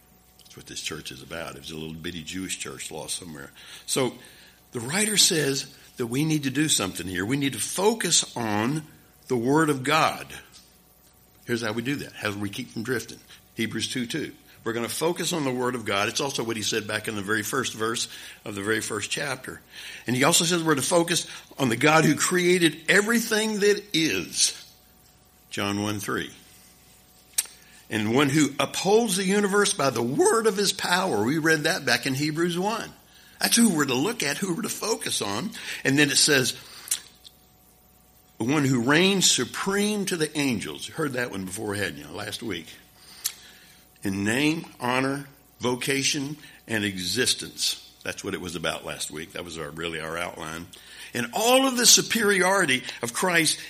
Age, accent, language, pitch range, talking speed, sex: 60-79, American, English, 110-170 Hz, 190 wpm, male